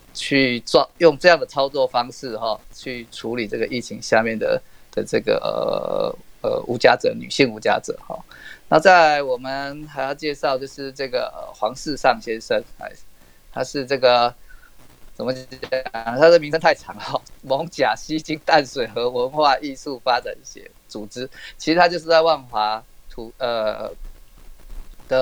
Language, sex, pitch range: Chinese, male, 125-185 Hz